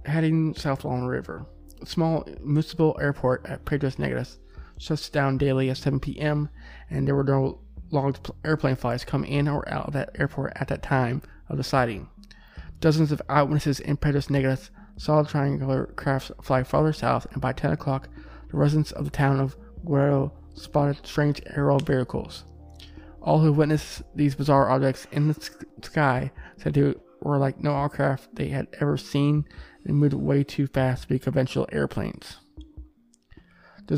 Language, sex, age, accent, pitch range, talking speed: English, male, 20-39, American, 130-150 Hz, 170 wpm